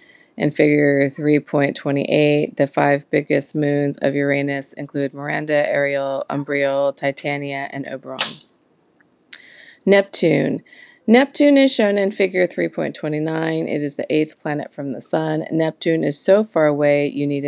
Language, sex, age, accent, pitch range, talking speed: English, female, 30-49, American, 140-170 Hz, 130 wpm